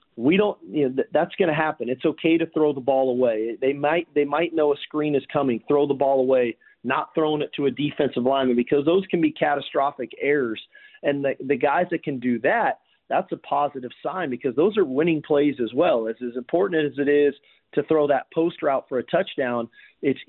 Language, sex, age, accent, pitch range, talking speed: English, male, 40-59, American, 130-160 Hz, 220 wpm